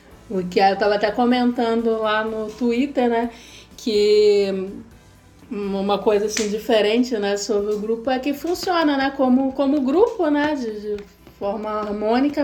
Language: Portuguese